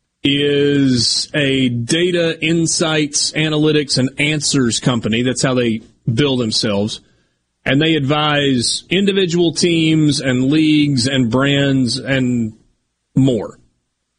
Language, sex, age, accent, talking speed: English, male, 30-49, American, 100 wpm